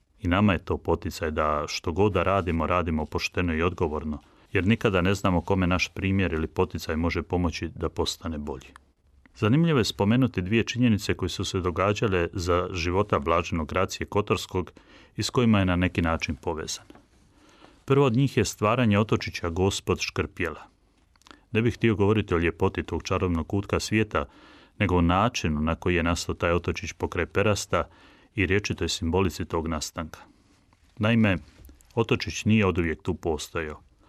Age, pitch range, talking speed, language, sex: 30-49, 85-105 Hz, 160 wpm, Croatian, male